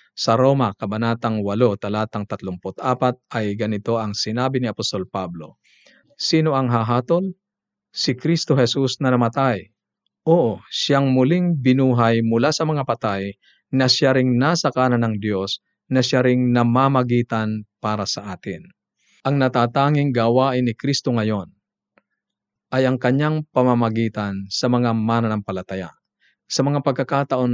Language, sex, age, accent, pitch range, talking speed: Filipino, male, 50-69, native, 110-135 Hz, 125 wpm